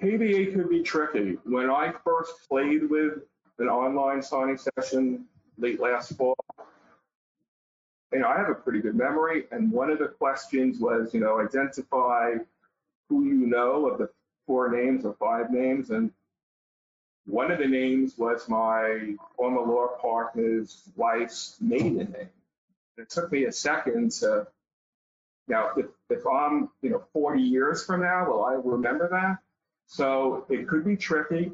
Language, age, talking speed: English, 50-69, 155 wpm